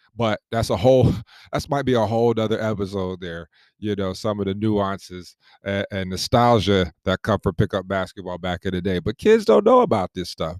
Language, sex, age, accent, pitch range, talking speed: English, male, 30-49, American, 95-120 Hz, 210 wpm